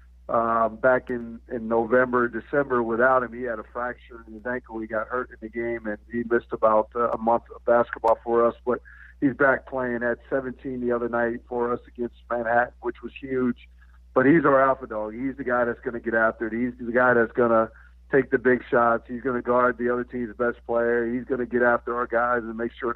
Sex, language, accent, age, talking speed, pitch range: male, English, American, 50-69, 240 wpm, 115-130 Hz